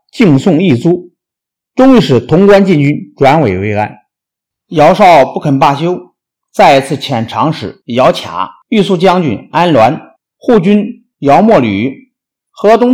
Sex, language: male, Chinese